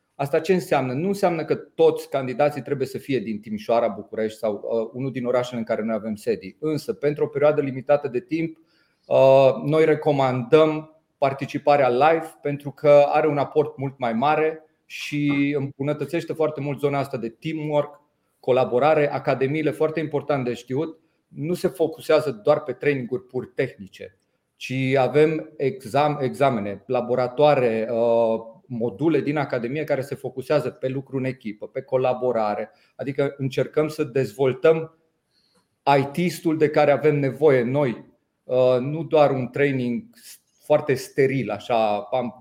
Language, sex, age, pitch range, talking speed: Romanian, male, 40-59, 125-155 Hz, 145 wpm